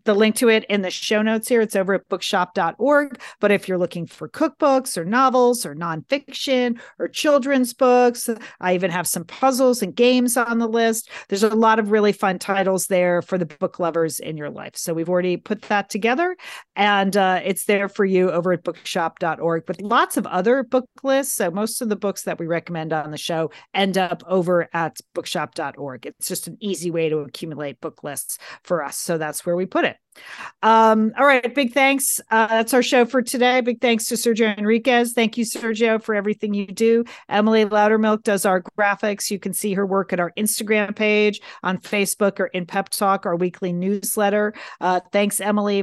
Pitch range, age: 185-230 Hz, 40-59